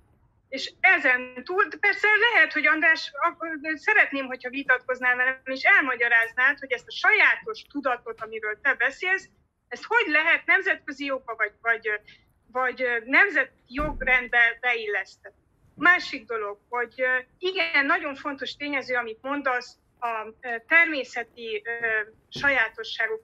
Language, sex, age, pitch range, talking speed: Hungarian, female, 30-49, 235-315 Hz, 115 wpm